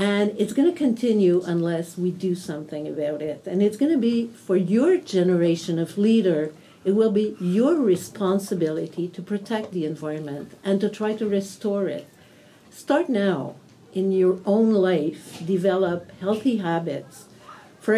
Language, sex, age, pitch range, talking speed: English, female, 50-69, 175-225 Hz, 155 wpm